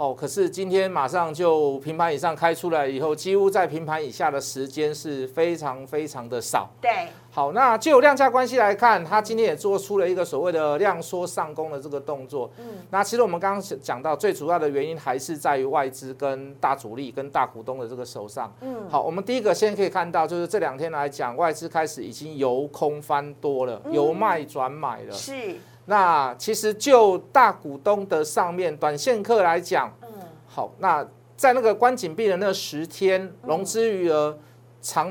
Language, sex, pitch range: Chinese, male, 150-220 Hz